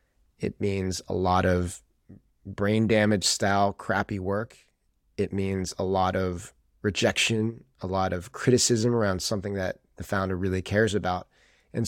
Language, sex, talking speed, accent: English, male, 145 wpm, American